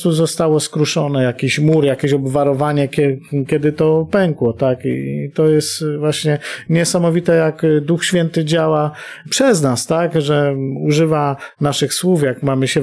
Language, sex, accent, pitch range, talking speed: Polish, male, native, 145-170 Hz, 135 wpm